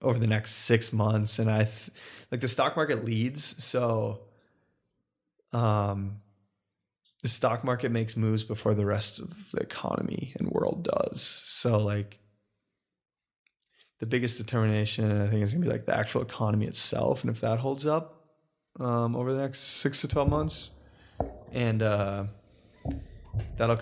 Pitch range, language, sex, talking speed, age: 105-125 Hz, English, male, 150 wpm, 20-39